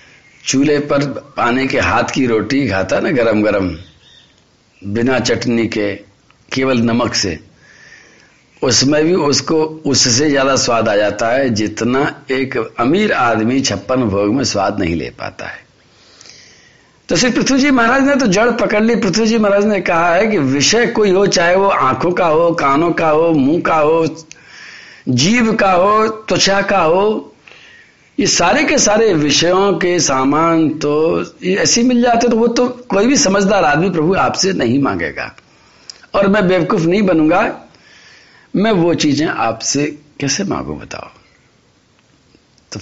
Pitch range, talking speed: 125-185 Hz, 155 wpm